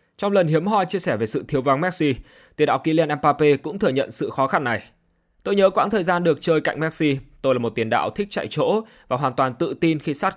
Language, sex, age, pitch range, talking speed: Vietnamese, male, 20-39, 125-170 Hz, 265 wpm